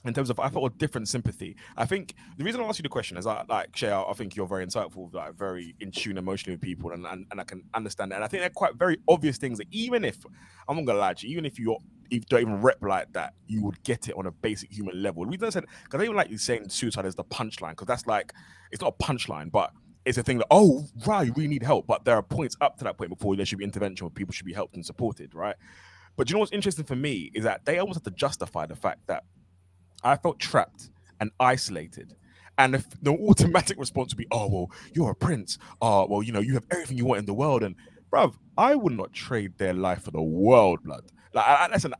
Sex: male